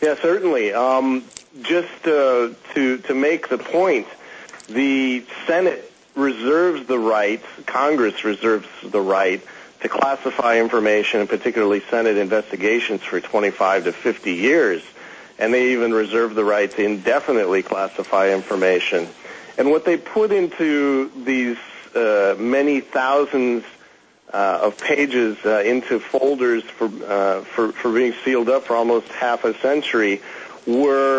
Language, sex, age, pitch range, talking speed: English, male, 40-59, 105-135 Hz, 135 wpm